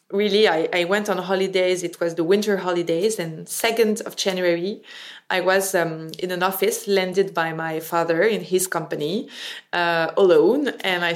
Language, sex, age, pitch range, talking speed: English, female, 20-39, 175-215 Hz, 170 wpm